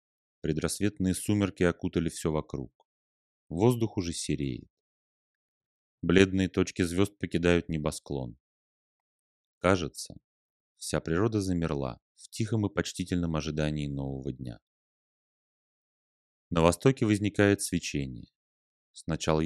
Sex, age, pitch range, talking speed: male, 30-49, 75-95 Hz, 90 wpm